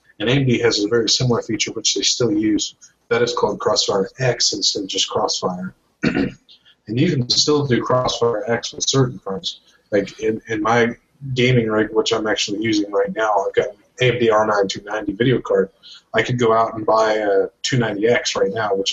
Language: English